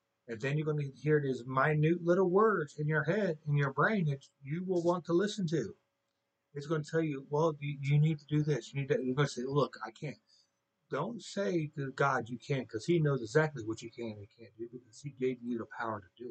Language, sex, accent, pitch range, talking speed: English, male, American, 125-155 Hz, 245 wpm